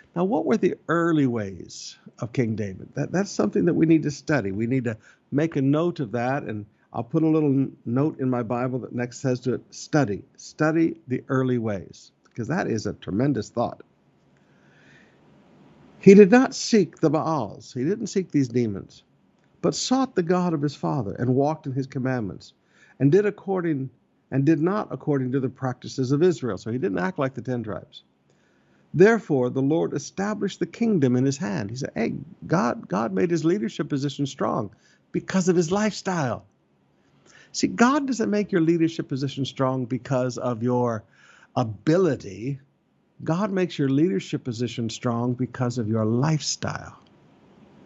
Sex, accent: male, American